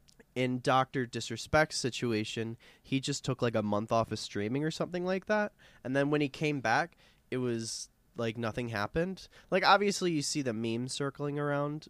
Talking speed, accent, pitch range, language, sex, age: 180 wpm, American, 110-140 Hz, English, male, 20-39